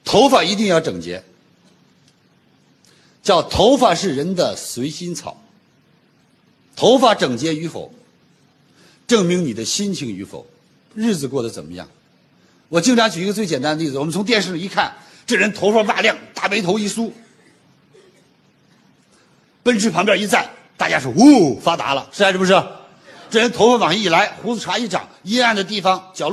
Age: 50-69